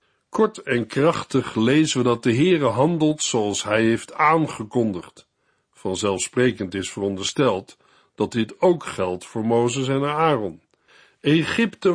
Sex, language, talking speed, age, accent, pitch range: male, Dutch, 125 wpm, 50-69, Dutch, 120-175 Hz